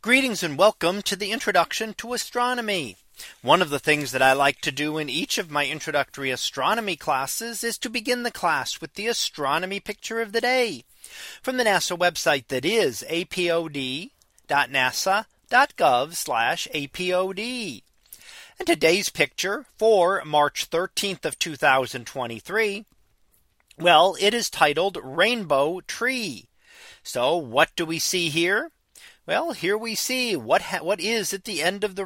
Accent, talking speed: American, 140 wpm